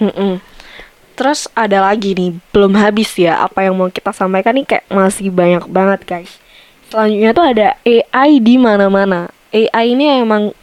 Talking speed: 160 wpm